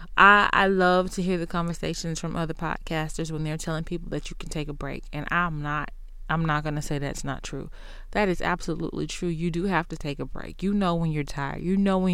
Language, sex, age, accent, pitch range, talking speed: English, female, 20-39, American, 160-195 Hz, 240 wpm